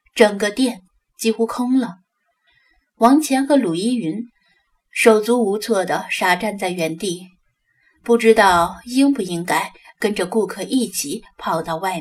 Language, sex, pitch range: Chinese, female, 185-235 Hz